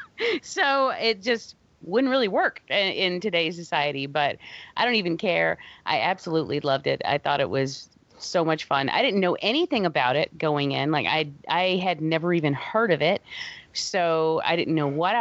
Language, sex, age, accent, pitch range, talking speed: English, female, 30-49, American, 155-210 Hz, 185 wpm